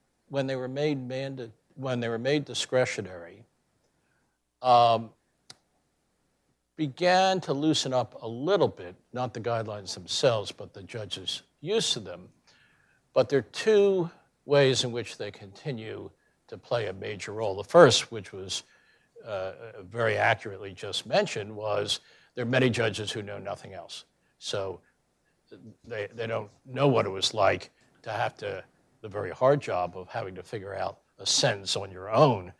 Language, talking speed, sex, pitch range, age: English, 155 wpm, male, 105-145 Hz, 60-79